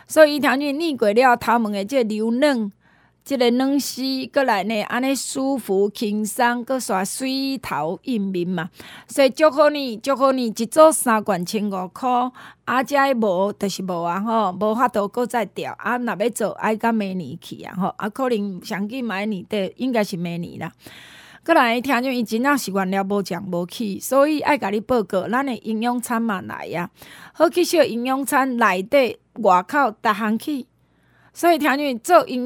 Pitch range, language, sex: 205-265 Hz, Chinese, female